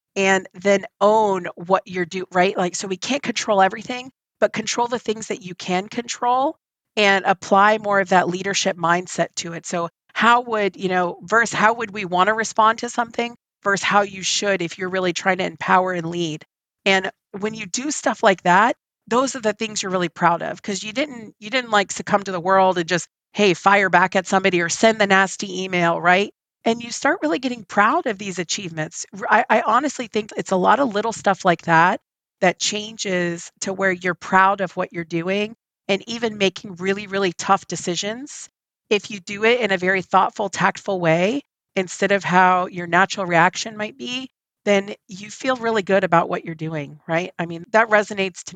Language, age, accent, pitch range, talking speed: English, 40-59, American, 180-215 Hz, 205 wpm